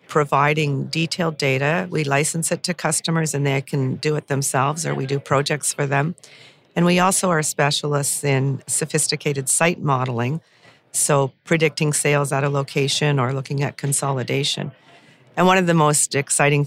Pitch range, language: 135-155 Hz, English